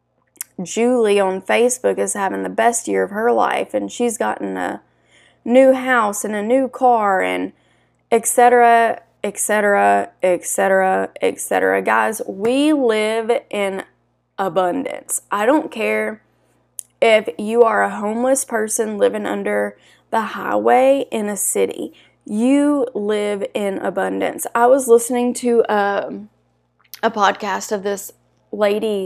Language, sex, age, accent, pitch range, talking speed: English, female, 10-29, American, 190-240 Hz, 135 wpm